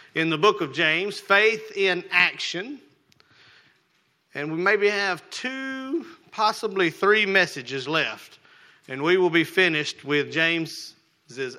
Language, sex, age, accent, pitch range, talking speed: English, male, 40-59, American, 155-200 Hz, 125 wpm